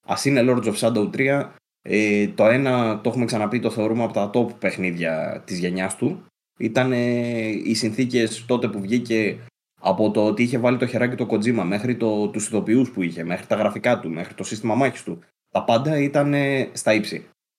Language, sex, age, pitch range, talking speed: Greek, male, 20-39, 95-115 Hz, 190 wpm